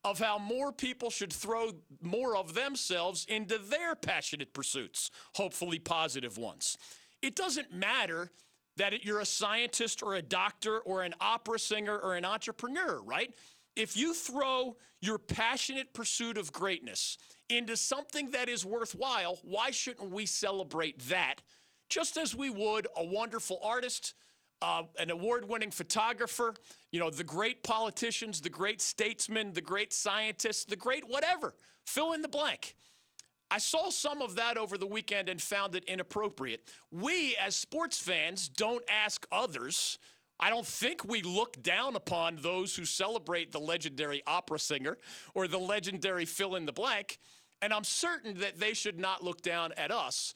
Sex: male